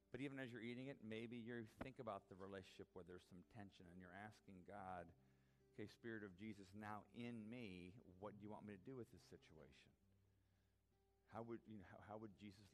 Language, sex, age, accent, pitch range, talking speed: English, male, 50-69, American, 95-135 Hz, 210 wpm